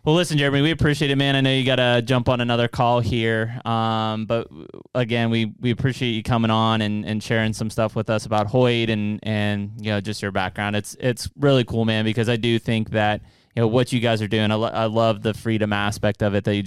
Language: English